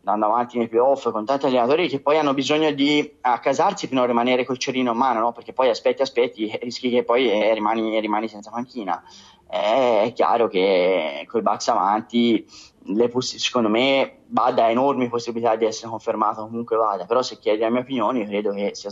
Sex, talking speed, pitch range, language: male, 195 wpm, 115-140 Hz, Italian